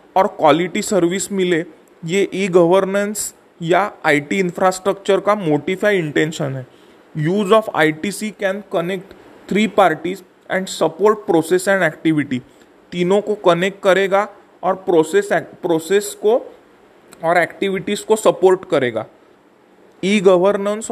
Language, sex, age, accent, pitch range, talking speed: English, male, 30-49, Indian, 175-205 Hz, 110 wpm